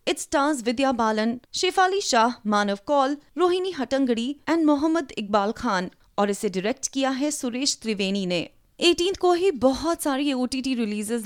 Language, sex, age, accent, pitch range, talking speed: Hindi, female, 30-49, native, 230-320 Hz, 155 wpm